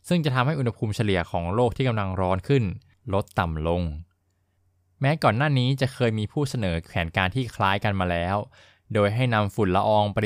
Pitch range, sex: 90-115 Hz, male